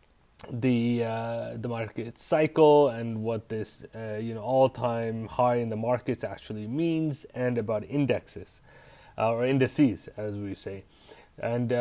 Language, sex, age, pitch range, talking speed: English, male, 30-49, 110-130 Hz, 145 wpm